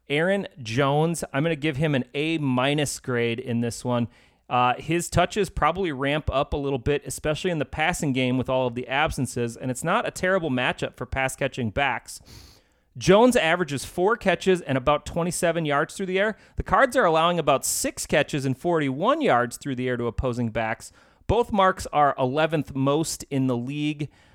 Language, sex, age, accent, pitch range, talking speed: English, male, 30-49, American, 130-175 Hz, 185 wpm